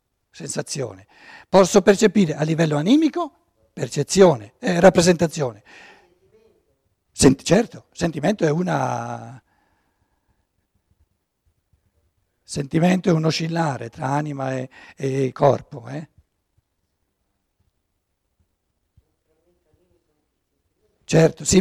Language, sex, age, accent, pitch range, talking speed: Italian, male, 60-79, native, 120-175 Hz, 75 wpm